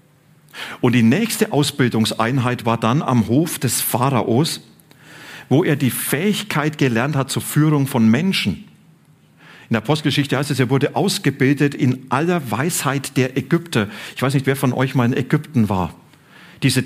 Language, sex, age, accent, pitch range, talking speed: German, male, 40-59, German, 125-155 Hz, 155 wpm